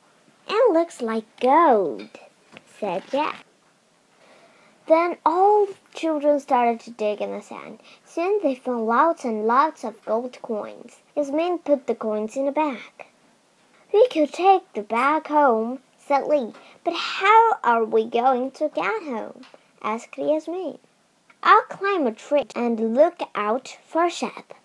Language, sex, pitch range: Chinese, male, 225-315 Hz